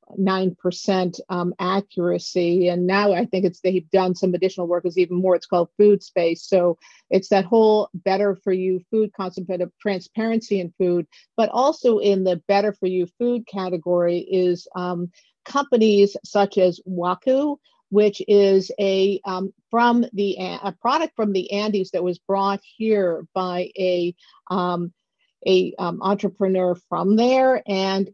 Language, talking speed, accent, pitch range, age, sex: English, 160 wpm, American, 185-210 Hz, 50-69, female